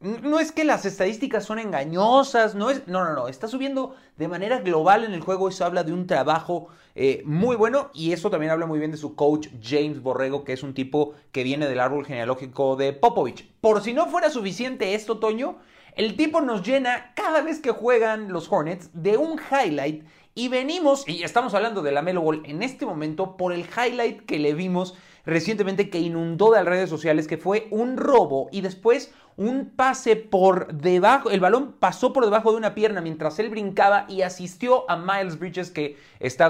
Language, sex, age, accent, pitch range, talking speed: Spanish, male, 30-49, Mexican, 150-225 Hz, 200 wpm